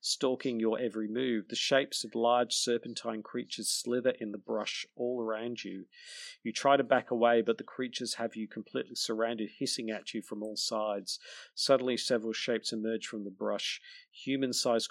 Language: English